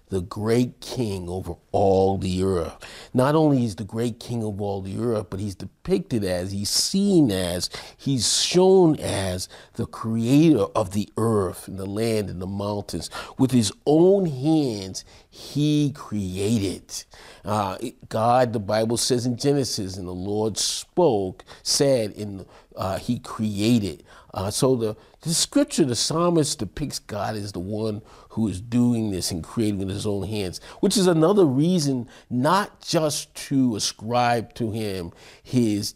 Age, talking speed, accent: 40-59, 155 wpm, American